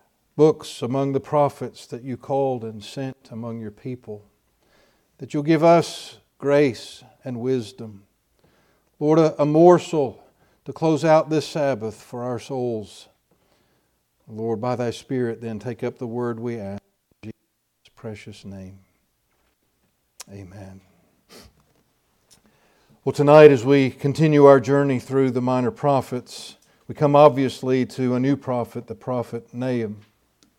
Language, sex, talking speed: English, male, 135 wpm